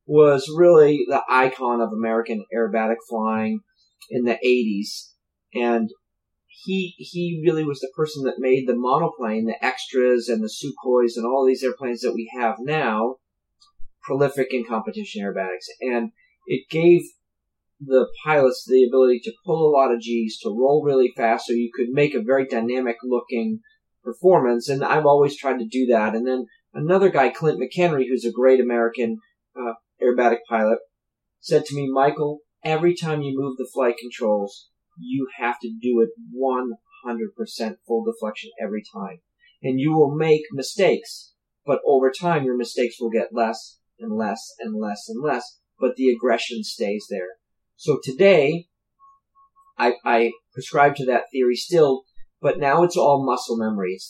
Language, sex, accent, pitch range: English, male, American, 115-150 Hz